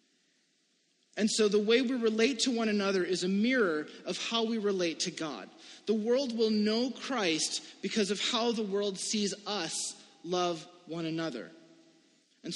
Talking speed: 160 wpm